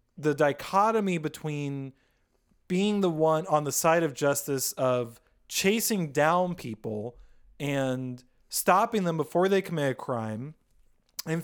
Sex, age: male, 20-39